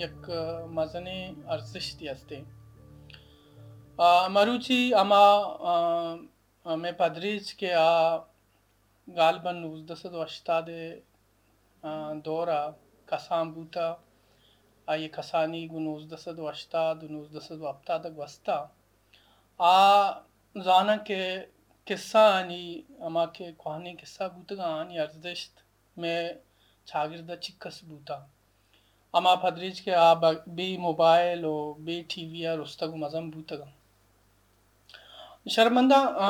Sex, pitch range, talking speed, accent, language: male, 140-175 Hz, 85 wpm, Indian, English